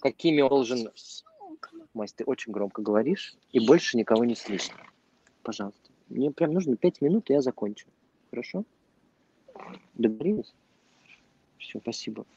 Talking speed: 120 wpm